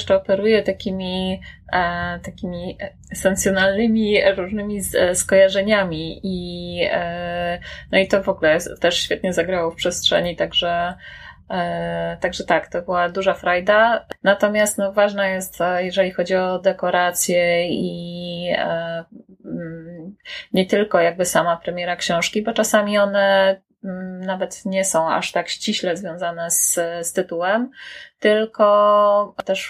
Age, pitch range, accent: 20-39, 175-195 Hz, native